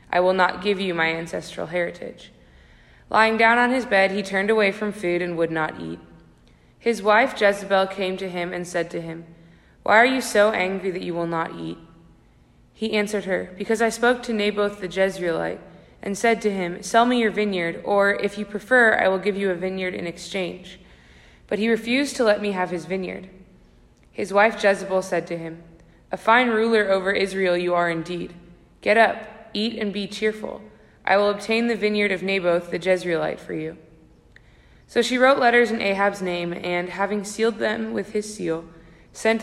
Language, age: English, 20-39